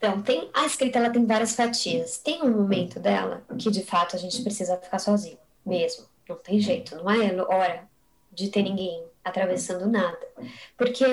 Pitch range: 190-230 Hz